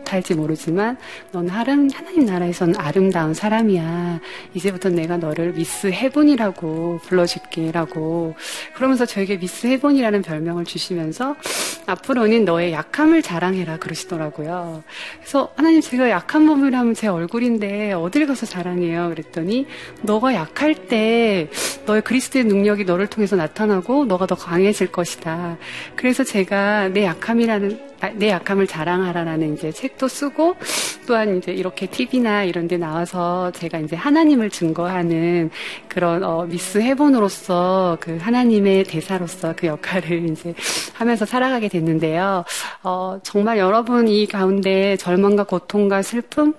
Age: 40-59